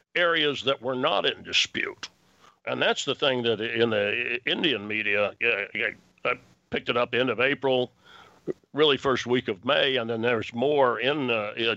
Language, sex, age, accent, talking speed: English, male, 60-79, American, 170 wpm